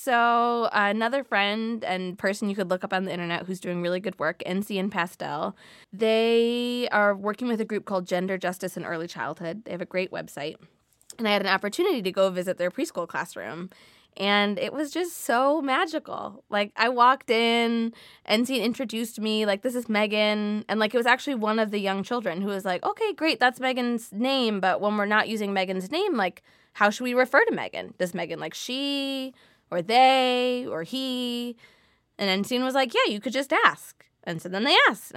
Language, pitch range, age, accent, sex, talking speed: English, 200-255 Hz, 20-39, American, female, 205 wpm